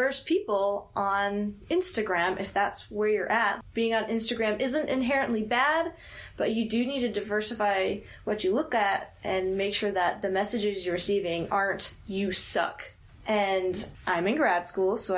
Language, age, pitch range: English, 10-29, 195-240 Hz